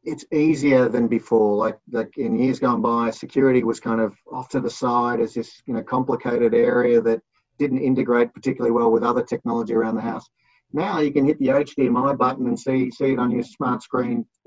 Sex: male